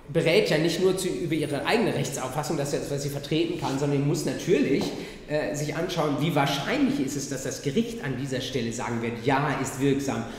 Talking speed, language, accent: 195 wpm, German, German